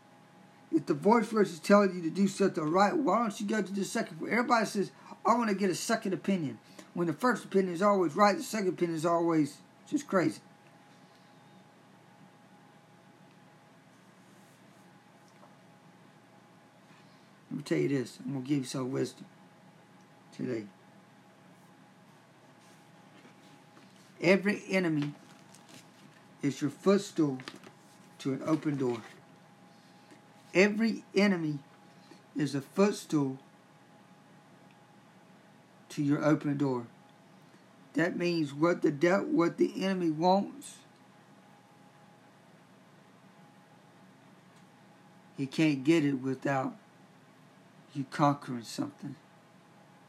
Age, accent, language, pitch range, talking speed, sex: 60-79, American, English, 155-195 Hz, 105 wpm, male